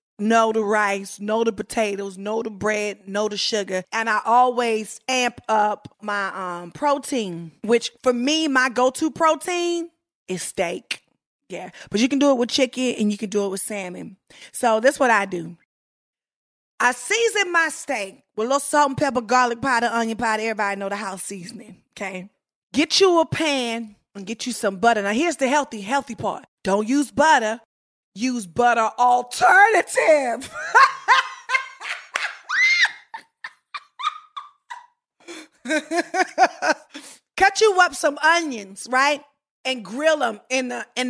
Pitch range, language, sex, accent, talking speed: 210-285 Hz, English, female, American, 145 wpm